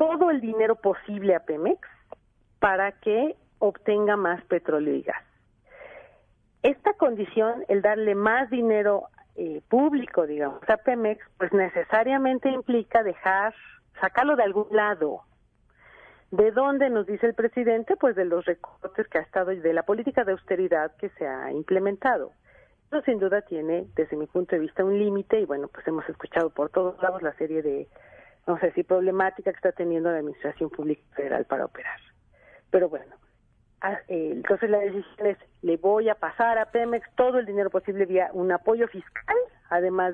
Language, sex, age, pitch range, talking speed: Spanish, female, 40-59, 175-230 Hz, 165 wpm